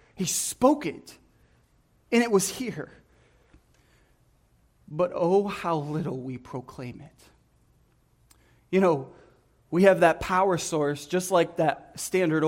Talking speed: 120 wpm